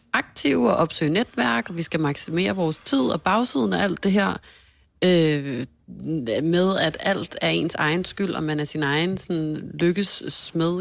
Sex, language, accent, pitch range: female, Danish, native, 145-175 Hz